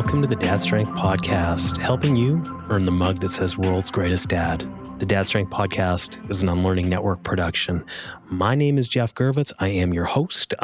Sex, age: male, 30-49